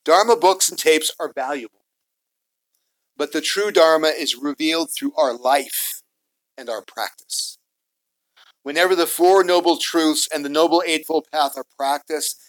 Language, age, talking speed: English, 50-69, 145 wpm